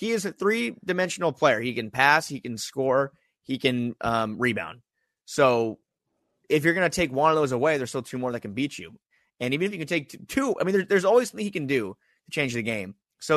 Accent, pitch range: American, 115-165 Hz